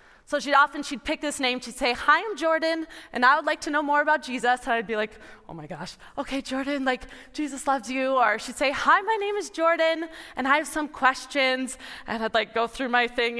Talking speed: 240 wpm